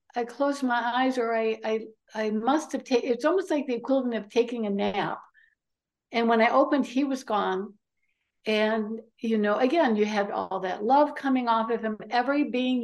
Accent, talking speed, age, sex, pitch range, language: American, 195 wpm, 60-79, female, 205-245 Hz, English